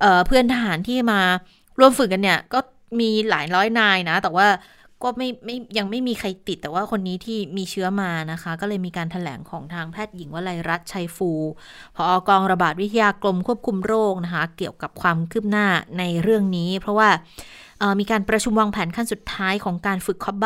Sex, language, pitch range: female, Thai, 180-220 Hz